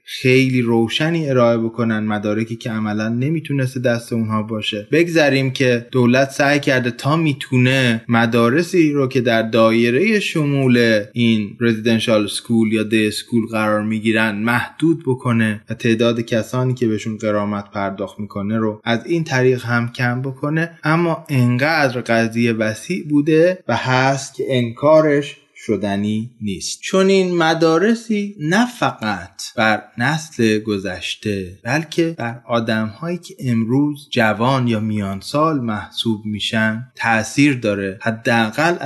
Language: Persian